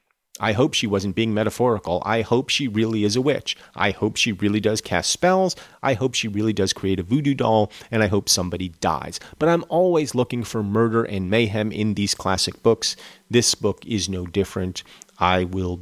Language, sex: English, male